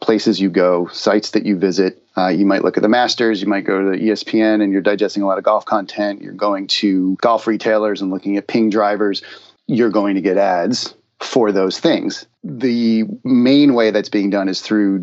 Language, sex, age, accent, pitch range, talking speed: English, male, 30-49, American, 95-110 Hz, 215 wpm